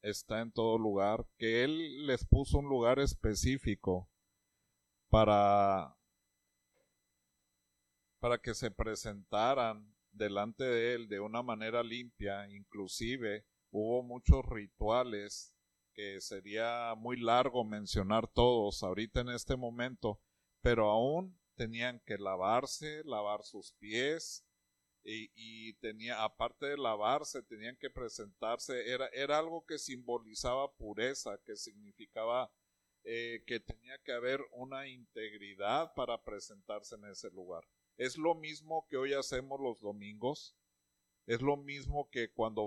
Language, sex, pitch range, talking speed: Spanish, male, 105-130 Hz, 120 wpm